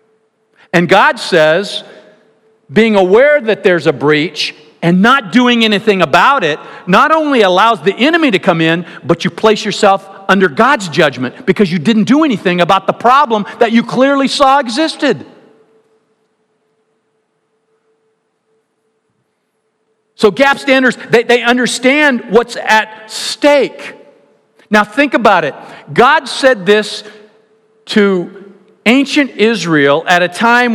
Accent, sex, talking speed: American, male, 125 wpm